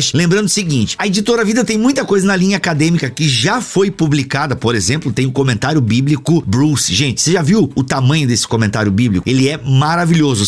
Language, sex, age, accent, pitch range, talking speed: Portuguese, male, 50-69, Brazilian, 145-200 Hz, 200 wpm